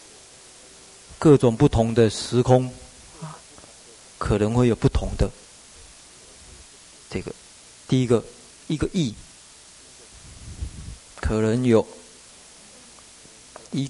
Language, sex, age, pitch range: Chinese, male, 30-49, 105-130 Hz